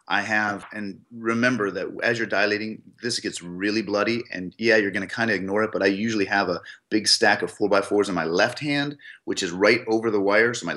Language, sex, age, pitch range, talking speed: English, male, 30-49, 100-120 Hz, 235 wpm